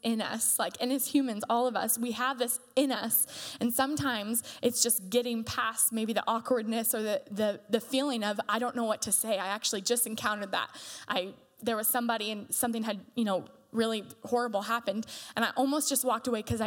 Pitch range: 215-260 Hz